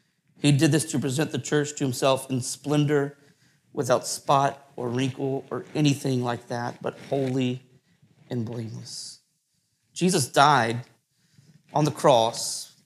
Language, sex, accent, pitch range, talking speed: English, male, American, 145-215 Hz, 130 wpm